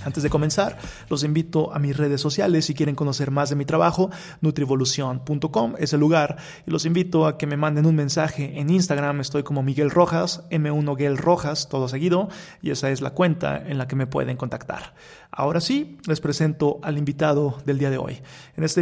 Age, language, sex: 30-49, Spanish, male